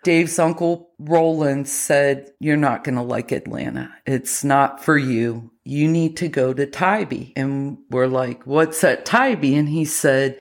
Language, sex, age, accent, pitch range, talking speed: English, female, 40-59, American, 145-200 Hz, 165 wpm